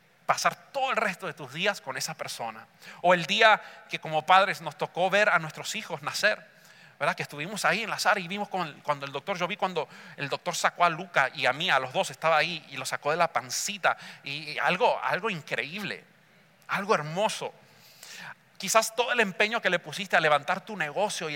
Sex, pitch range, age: male, 160-210 Hz, 40-59